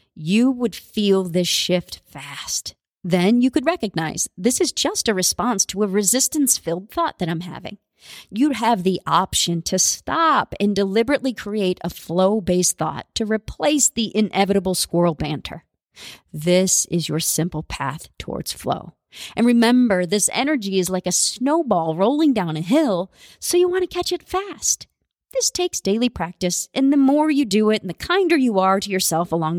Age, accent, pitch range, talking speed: 40-59, American, 185-290 Hz, 170 wpm